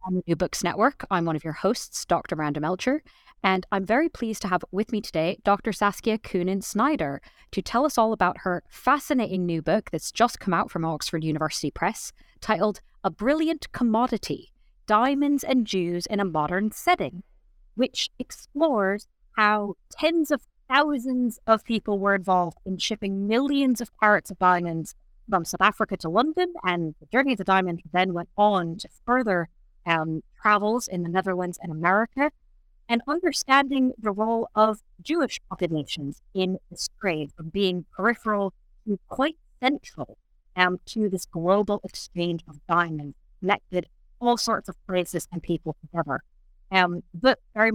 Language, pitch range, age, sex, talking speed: English, 180-235 Hz, 30-49, female, 160 wpm